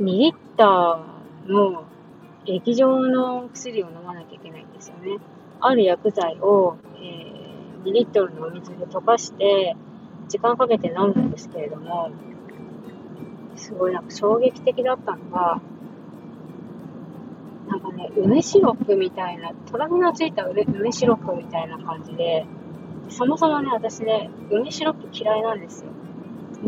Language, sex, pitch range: Japanese, female, 190-240 Hz